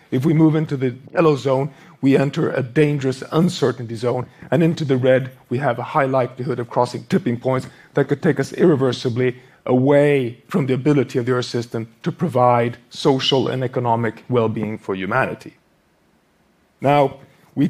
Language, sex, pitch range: Japanese, male, 120-145 Hz